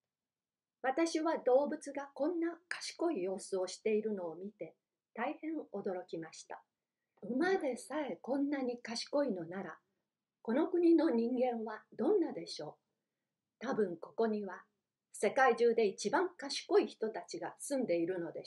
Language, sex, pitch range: Japanese, female, 205-280 Hz